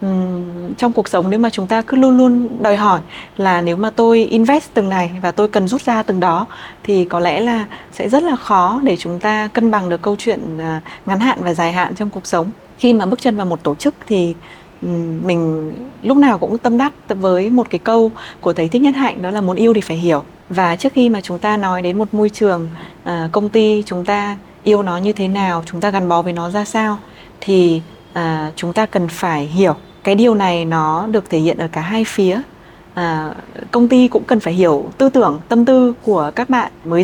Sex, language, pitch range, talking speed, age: female, Vietnamese, 175-230 Hz, 230 wpm, 20-39